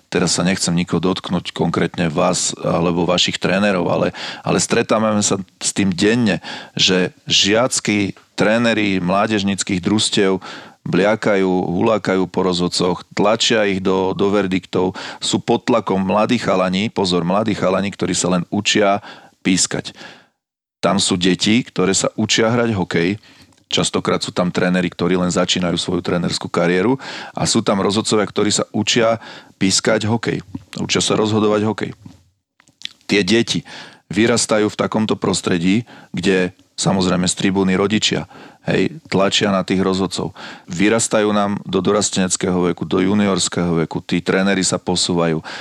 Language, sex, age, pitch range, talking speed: Slovak, male, 40-59, 90-105 Hz, 135 wpm